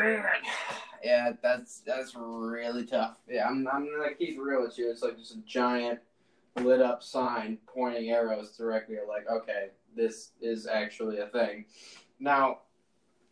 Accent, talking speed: American, 150 wpm